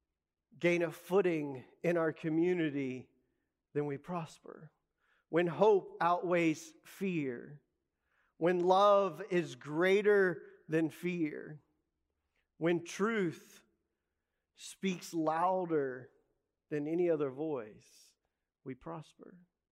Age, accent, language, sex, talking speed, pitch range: 40-59, American, English, male, 90 wpm, 145-180 Hz